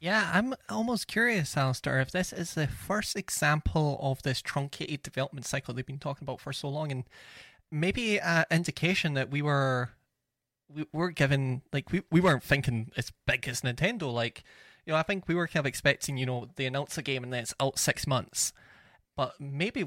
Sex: male